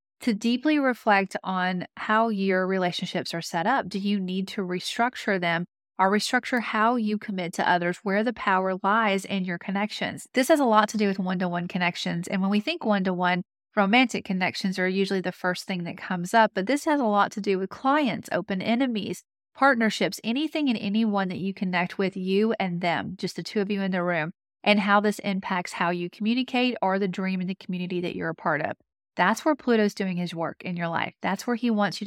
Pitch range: 185-220 Hz